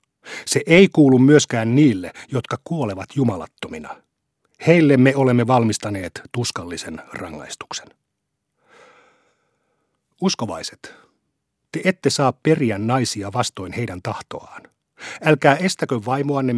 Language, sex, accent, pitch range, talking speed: Finnish, male, native, 115-145 Hz, 95 wpm